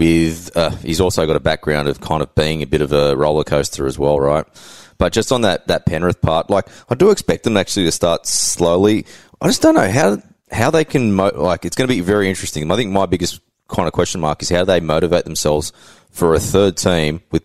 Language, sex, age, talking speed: English, male, 20-39, 240 wpm